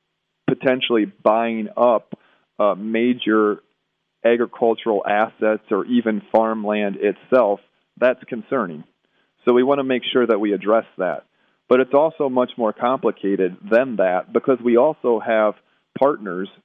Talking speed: 130 wpm